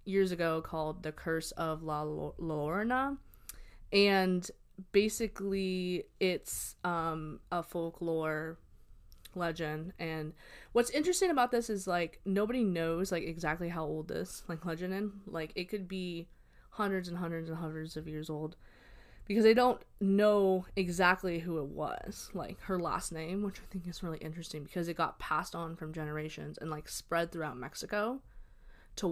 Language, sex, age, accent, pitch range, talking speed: English, female, 20-39, American, 160-200 Hz, 155 wpm